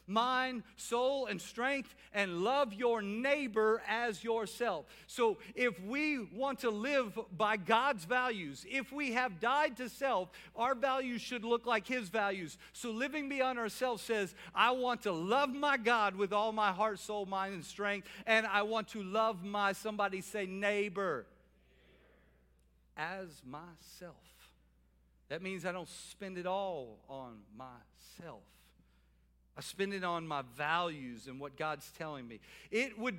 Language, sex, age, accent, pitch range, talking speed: English, male, 50-69, American, 170-235 Hz, 150 wpm